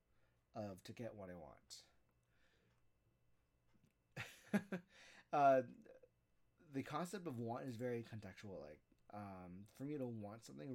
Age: 30-49